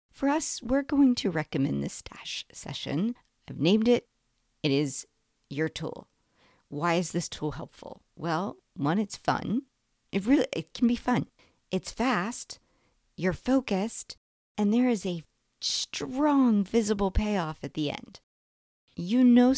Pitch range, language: 150-225 Hz, English